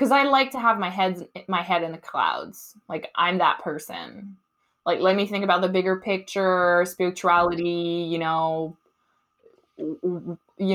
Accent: American